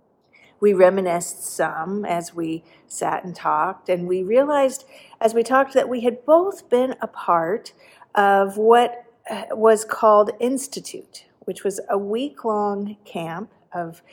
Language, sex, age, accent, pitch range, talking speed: English, female, 50-69, American, 175-215 Hz, 135 wpm